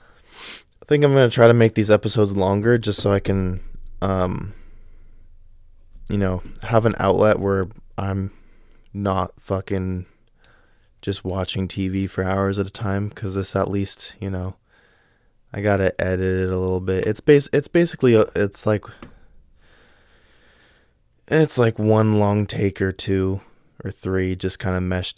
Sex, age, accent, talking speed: male, 20-39, American, 155 wpm